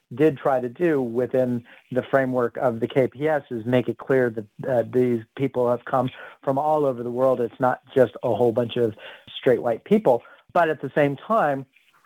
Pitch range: 125-145 Hz